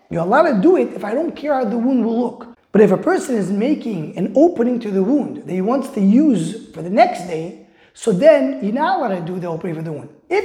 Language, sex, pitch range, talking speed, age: English, male, 200-265 Hz, 270 wpm, 20-39